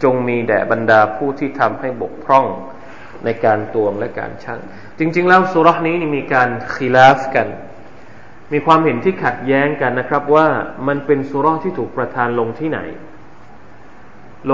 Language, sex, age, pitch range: Thai, male, 20-39, 135-175 Hz